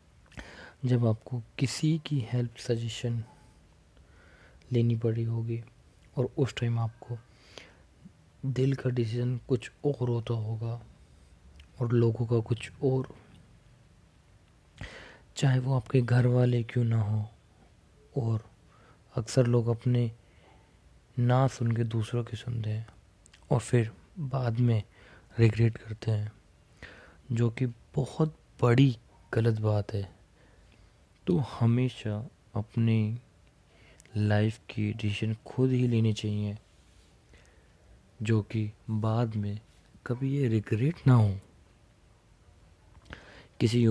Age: 20-39